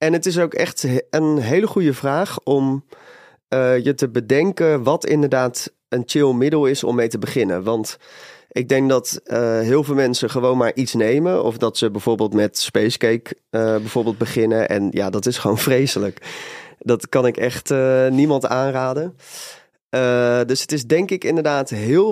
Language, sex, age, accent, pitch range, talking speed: Dutch, male, 30-49, Dutch, 115-145 Hz, 175 wpm